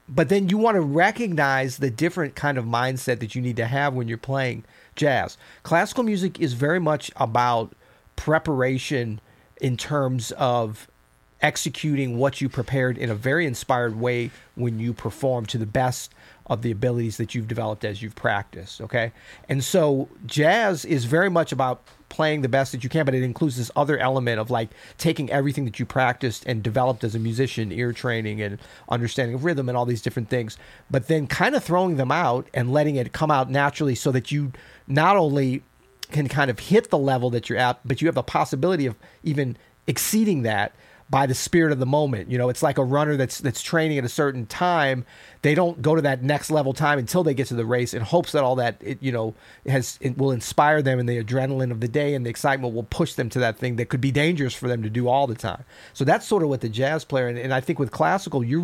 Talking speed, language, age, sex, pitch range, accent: 225 wpm, English, 40-59, male, 120-150 Hz, American